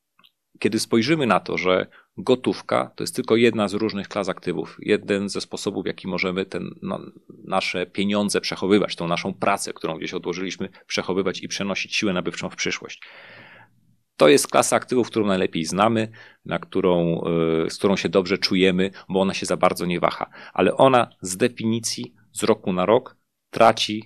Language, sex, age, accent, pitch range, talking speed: Polish, male, 40-59, native, 95-120 Hz, 160 wpm